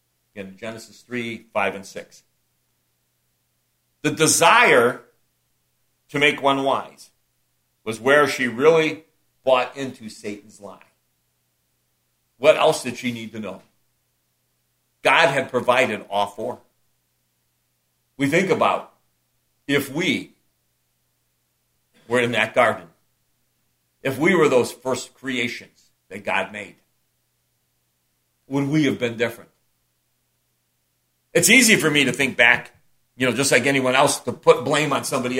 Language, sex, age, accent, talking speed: English, male, 60-79, American, 125 wpm